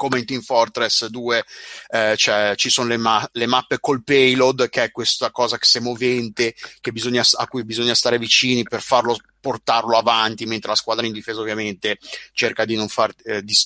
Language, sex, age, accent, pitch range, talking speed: Italian, male, 30-49, native, 110-130 Hz, 200 wpm